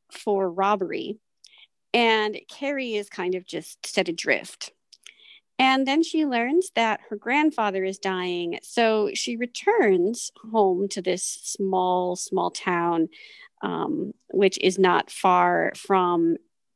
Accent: American